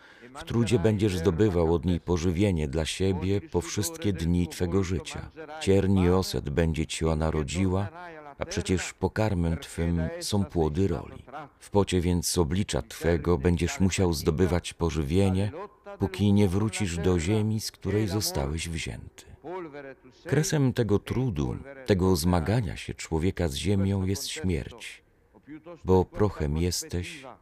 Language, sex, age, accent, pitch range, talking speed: Polish, male, 40-59, native, 90-110 Hz, 135 wpm